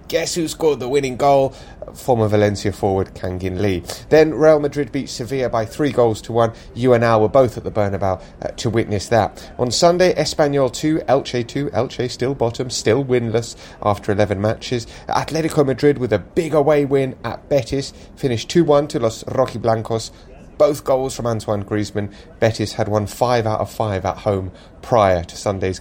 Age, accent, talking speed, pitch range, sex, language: 30-49, British, 185 wpm, 105-140 Hz, male, English